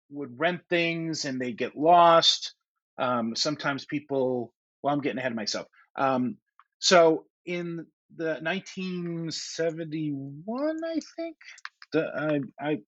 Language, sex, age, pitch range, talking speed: English, male, 30-49, 135-170 Hz, 115 wpm